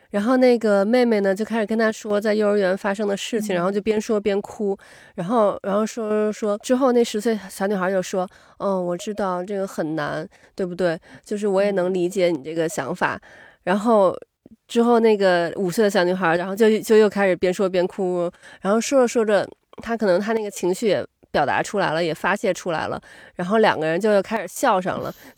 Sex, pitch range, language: female, 185-225 Hz, Chinese